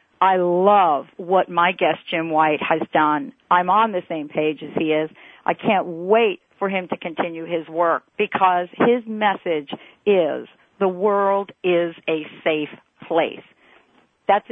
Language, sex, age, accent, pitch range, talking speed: English, female, 50-69, American, 170-220 Hz, 155 wpm